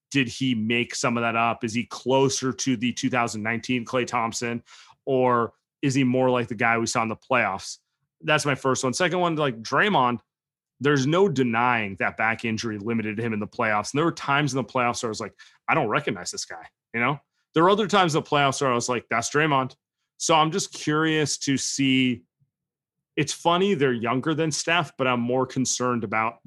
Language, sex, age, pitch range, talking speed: English, male, 30-49, 120-145 Hz, 215 wpm